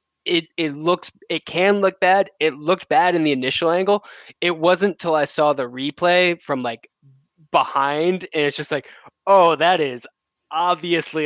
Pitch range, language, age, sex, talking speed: 130-180 Hz, English, 10-29, male, 170 wpm